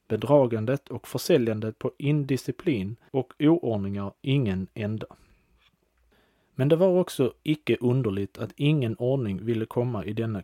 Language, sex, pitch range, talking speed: Swedish, male, 115-135 Hz, 125 wpm